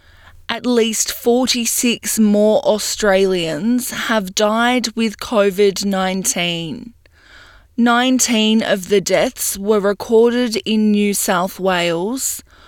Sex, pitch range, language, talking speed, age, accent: female, 195-235 Hz, English, 95 wpm, 20-39, Australian